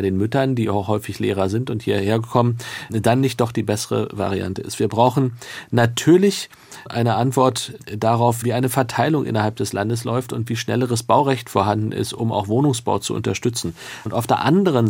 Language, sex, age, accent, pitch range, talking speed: German, male, 40-59, German, 105-125 Hz, 180 wpm